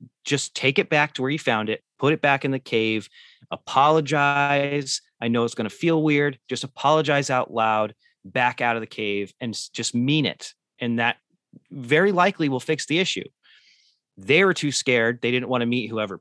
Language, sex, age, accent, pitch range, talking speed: English, male, 30-49, American, 110-145 Hz, 200 wpm